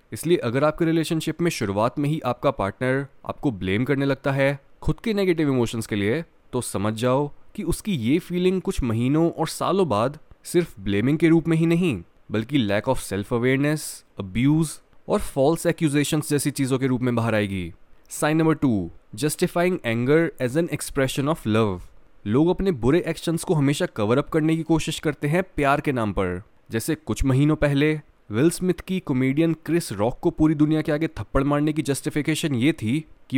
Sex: male